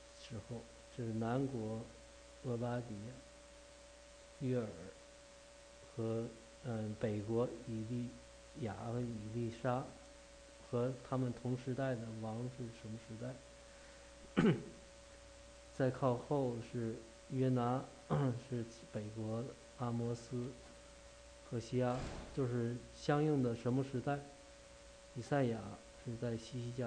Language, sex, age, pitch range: English, male, 50-69, 115-140 Hz